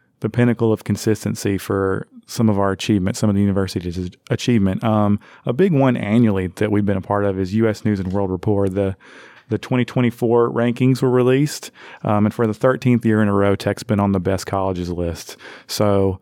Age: 30-49